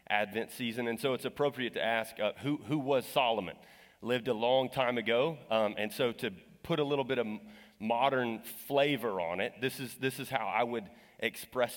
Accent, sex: American, male